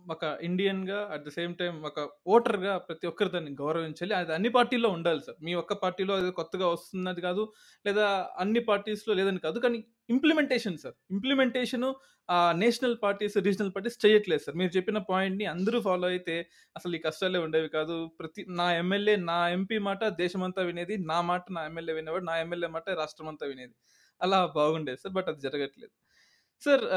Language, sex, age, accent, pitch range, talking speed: Telugu, male, 20-39, native, 170-215 Hz, 170 wpm